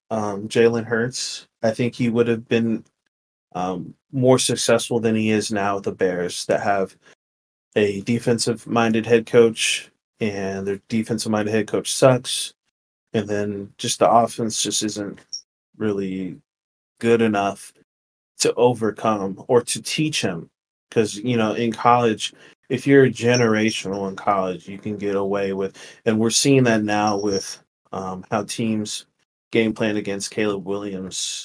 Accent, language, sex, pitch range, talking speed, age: American, English, male, 100-115 Hz, 150 wpm, 30-49